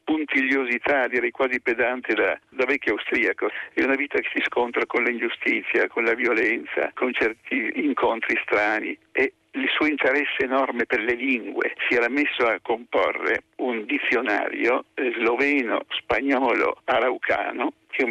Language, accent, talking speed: Italian, native, 140 wpm